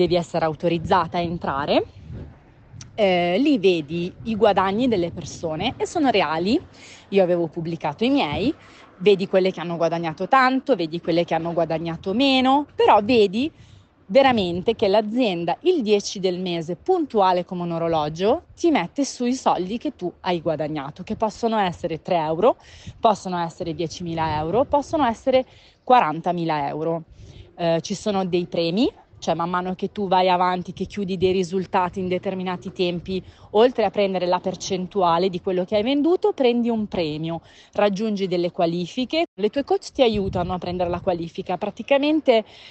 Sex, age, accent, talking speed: female, 30-49, native, 155 wpm